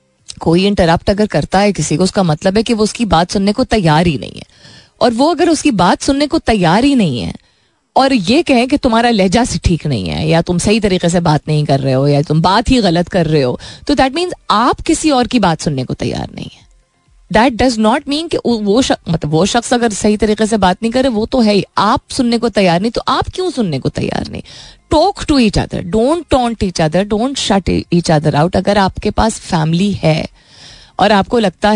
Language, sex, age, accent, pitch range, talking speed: Hindi, female, 20-39, native, 170-235 Hz, 235 wpm